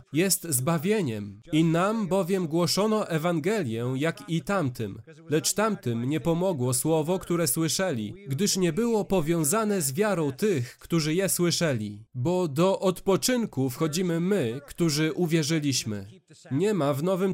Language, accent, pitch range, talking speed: Polish, native, 140-190 Hz, 130 wpm